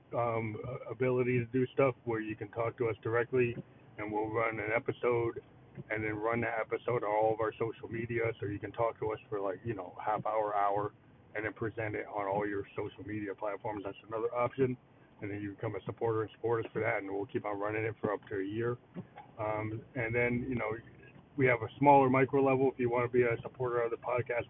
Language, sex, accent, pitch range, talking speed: English, male, American, 110-130 Hz, 240 wpm